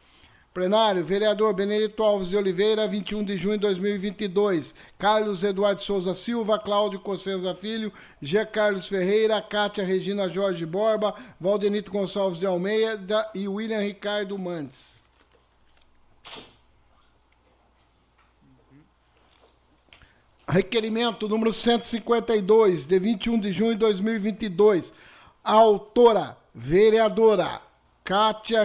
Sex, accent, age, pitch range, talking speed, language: male, Brazilian, 60-79, 195-220 Hz, 95 wpm, Portuguese